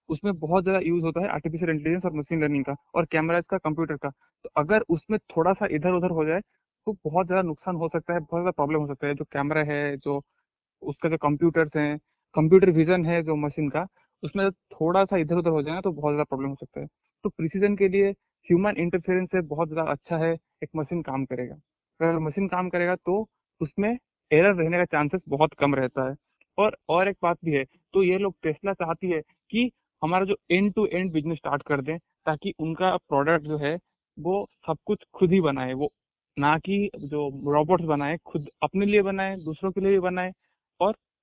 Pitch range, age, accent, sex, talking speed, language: 150-185 Hz, 20-39, native, male, 165 wpm, Hindi